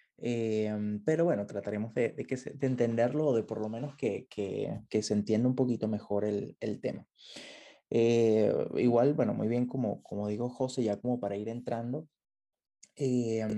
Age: 20-39